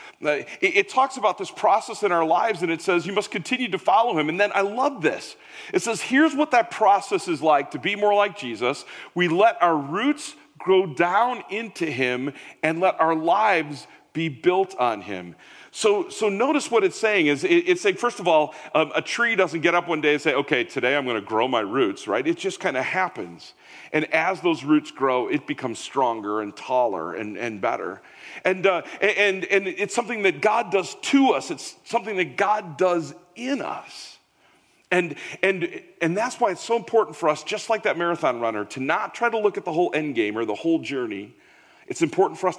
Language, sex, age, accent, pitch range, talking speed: English, male, 40-59, American, 150-235 Hz, 215 wpm